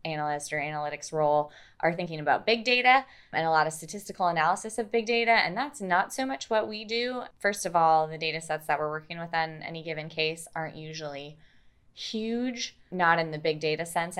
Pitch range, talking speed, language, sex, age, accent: 150-185 Hz, 205 wpm, English, female, 20-39, American